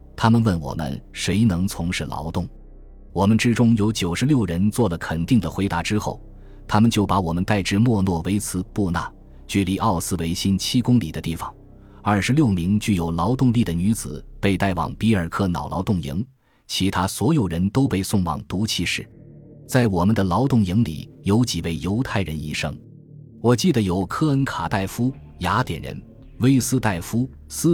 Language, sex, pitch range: Chinese, male, 90-120 Hz